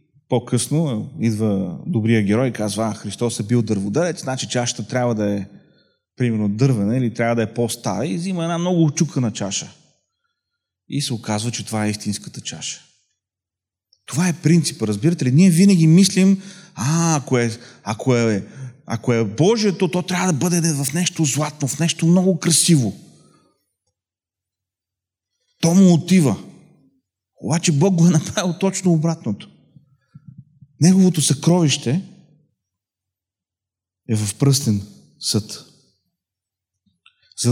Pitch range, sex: 105-160 Hz, male